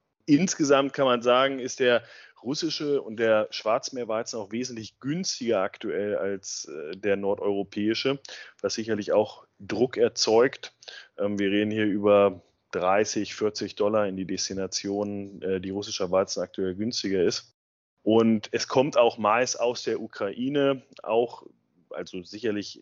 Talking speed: 130 wpm